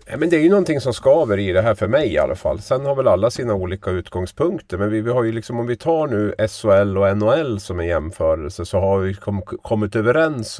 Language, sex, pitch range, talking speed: Swedish, male, 90-105 Hz, 250 wpm